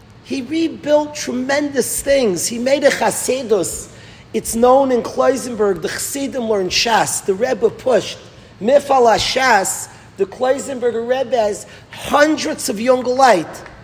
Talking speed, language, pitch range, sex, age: 125 wpm, English, 225-285 Hz, male, 40-59